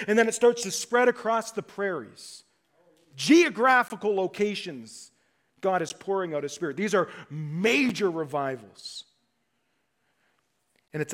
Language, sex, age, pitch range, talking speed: English, male, 40-59, 150-225 Hz, 125 wpm